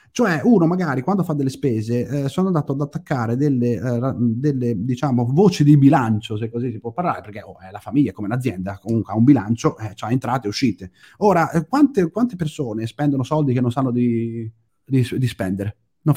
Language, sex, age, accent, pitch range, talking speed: Italian, male, 30-49, native, 115-150 Hz, 210 wpm